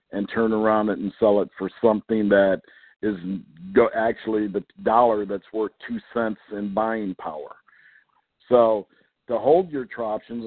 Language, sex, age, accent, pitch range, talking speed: English, male, 50-69, American, 105-120 Hz, 150 wpm